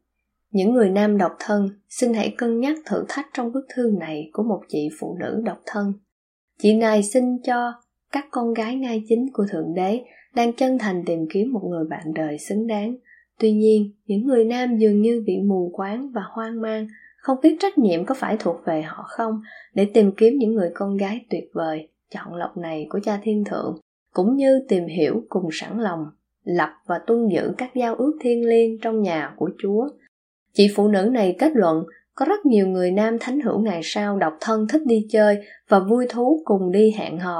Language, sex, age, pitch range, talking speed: Vietnamese, female, 20-39, 195-240 Hz, 210 wpm